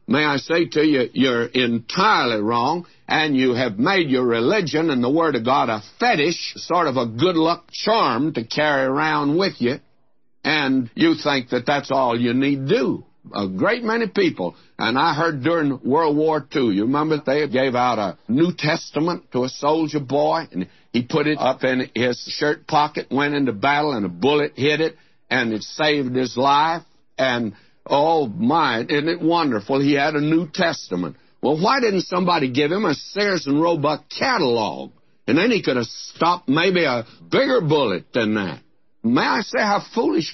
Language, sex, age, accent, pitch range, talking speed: English, male, 60-79, American, 125-165 Hz, 185 wpm